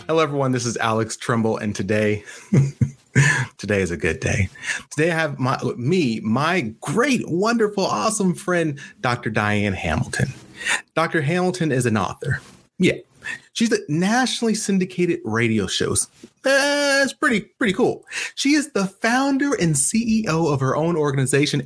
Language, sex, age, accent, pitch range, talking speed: English, male, 30-49, American, 125-200 Hz, 145 wpm